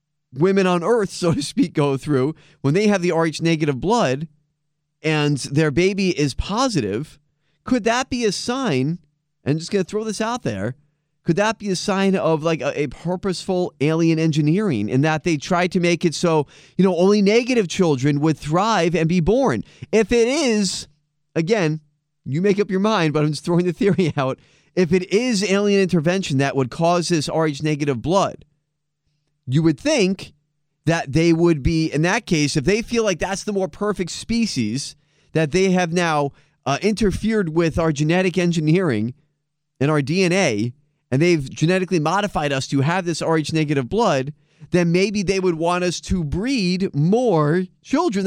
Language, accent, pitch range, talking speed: English, American, 150-190 Hz, 180 wpm